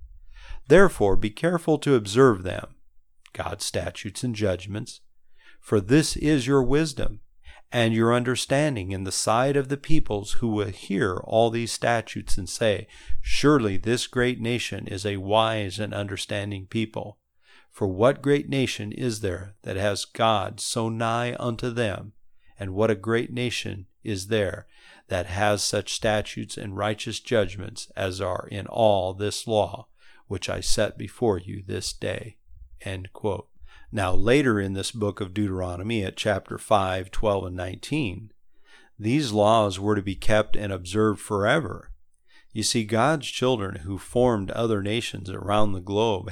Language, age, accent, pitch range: English, 50-69, American, 95-115 Hz